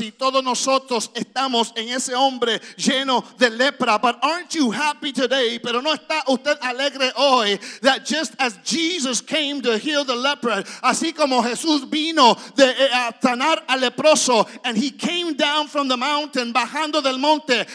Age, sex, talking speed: 50-69, male, 165 wpm